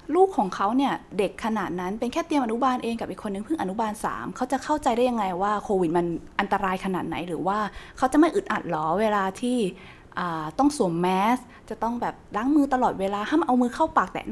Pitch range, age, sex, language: 185-245 Hz, 20-39, female, Thai